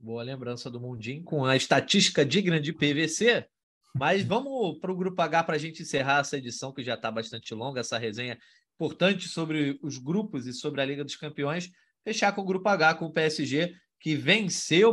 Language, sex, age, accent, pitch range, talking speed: Portuguese, male, 20-39, Brazilian, 140-190 Hz, 195 wpm